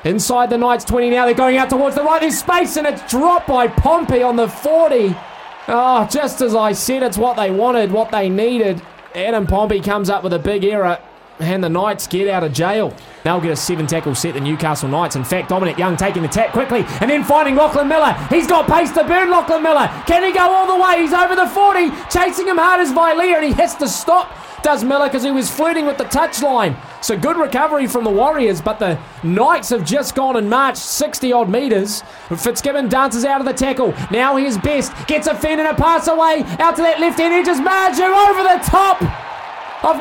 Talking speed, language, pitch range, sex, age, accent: 225 wpm, English, 210-320 Hz, male, 20-39, Australian